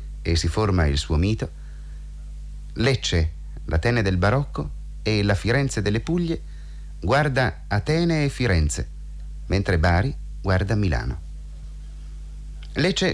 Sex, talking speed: male, 110 wpm